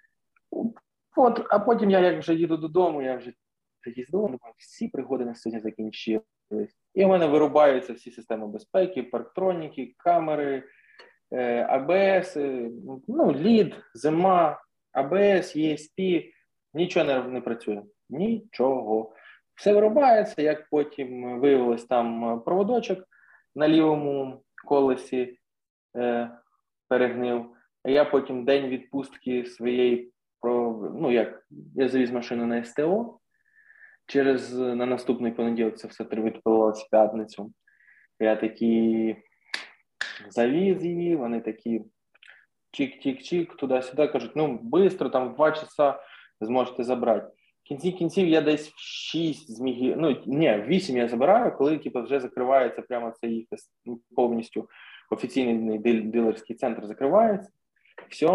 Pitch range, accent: 120-165 Hz, native